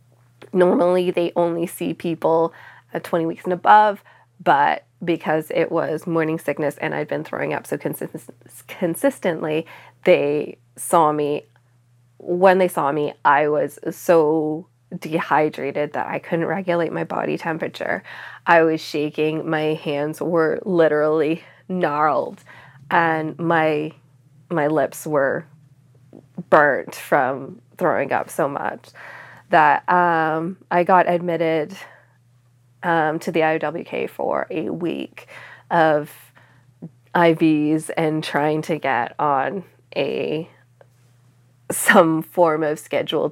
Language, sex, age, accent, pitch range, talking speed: English, female, 20-39, American, 145-170 Hz, 115 wpm